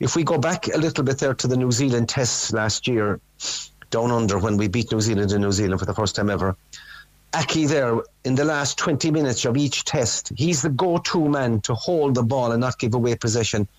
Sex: male